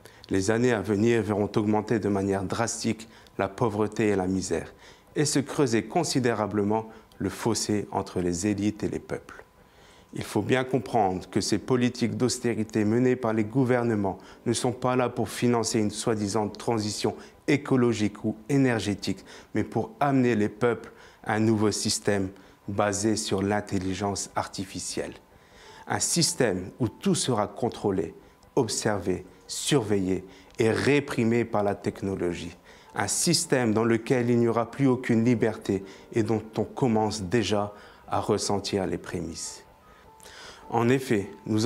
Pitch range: 100-125 Hz